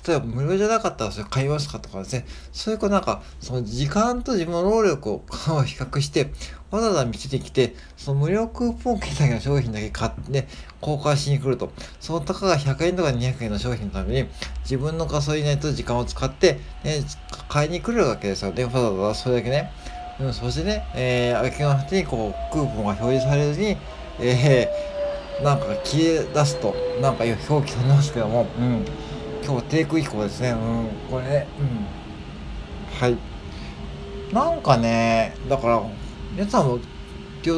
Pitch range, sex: 115-170 Hz, male